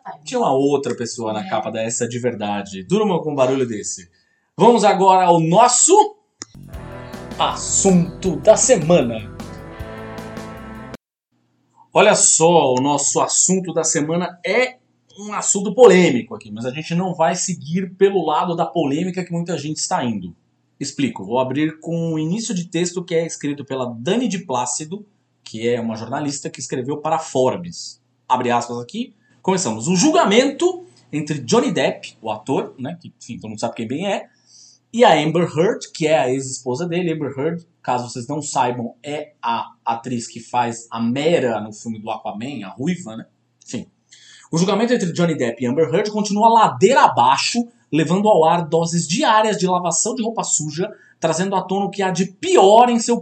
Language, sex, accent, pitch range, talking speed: Portuguese, male, Brazilian, 125-190 Hz, 170 wpm